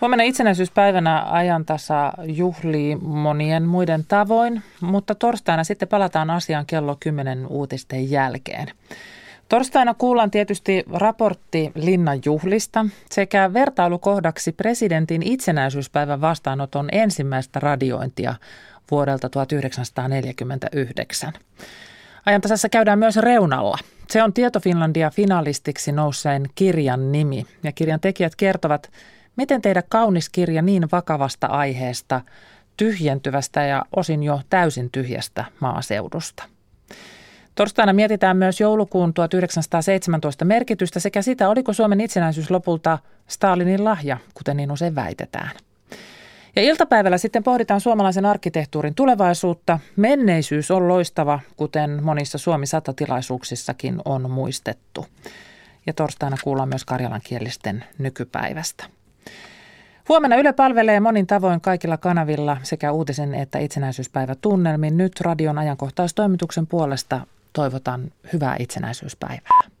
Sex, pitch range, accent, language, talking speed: male, 145-200 Hz, native, Finnish, 100 wpm